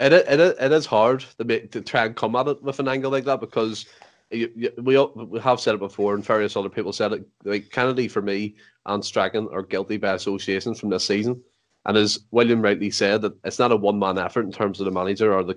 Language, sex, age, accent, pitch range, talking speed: English, male, 30-49, Irish, 100-115 Hz, 260 wpm